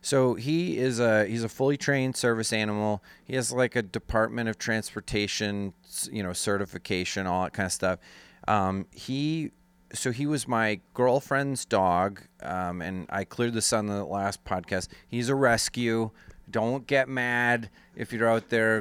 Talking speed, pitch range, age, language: 165 wpm, 100-125 Hz, 30-49, English